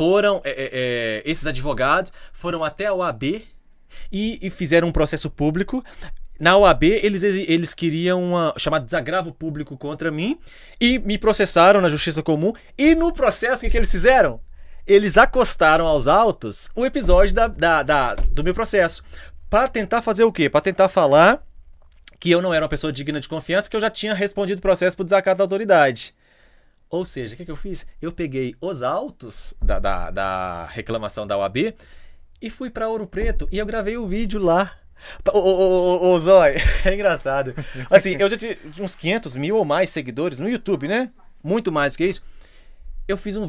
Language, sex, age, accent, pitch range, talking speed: Portuguese, male, 20-39, Brazilian, 145-205 Hz, 185 wpm